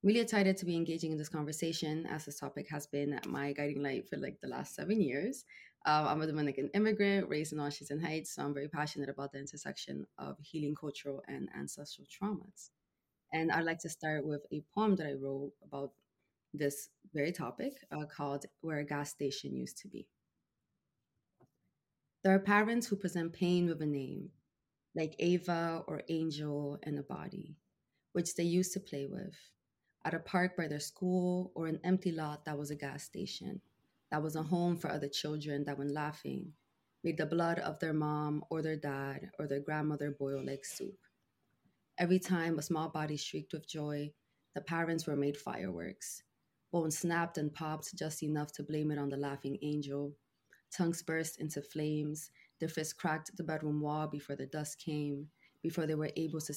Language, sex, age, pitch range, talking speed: English, female, 20-39, 145-170 Hz, 185 wpm